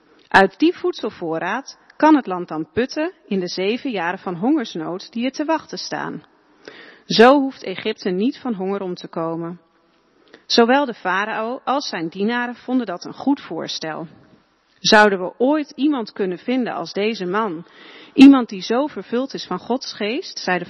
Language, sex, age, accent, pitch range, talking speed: Dutch, female, 40-59, Dutch, 185-260 Hz, 170 wpm